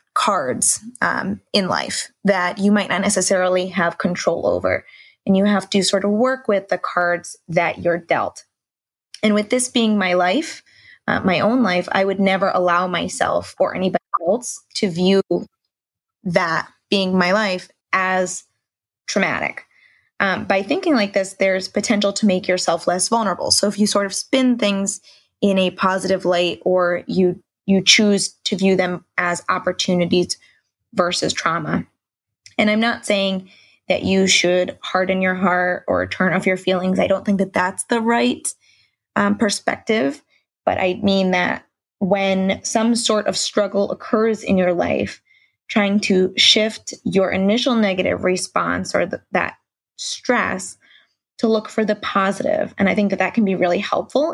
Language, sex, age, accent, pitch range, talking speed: English, female, 20-39, American, 185-215 Hz, 160 wpm